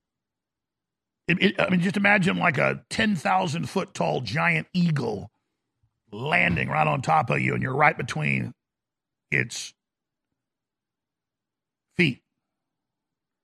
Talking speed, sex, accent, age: 105 wpm, male, American, 50-69